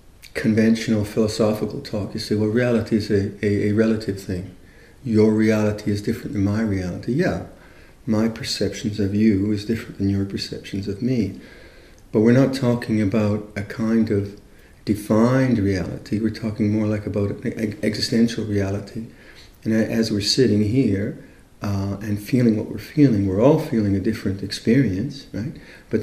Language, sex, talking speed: English, male, 160 wpm